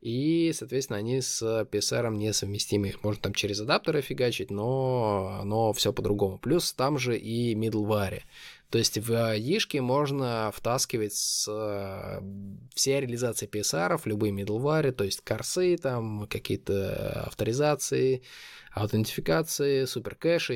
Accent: native